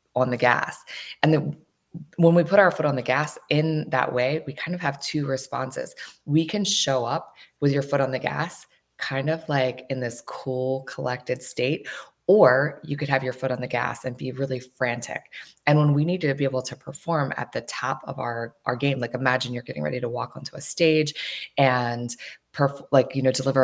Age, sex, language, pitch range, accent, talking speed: 20-39, female, English, 125-150 Hz, American, 210 wpm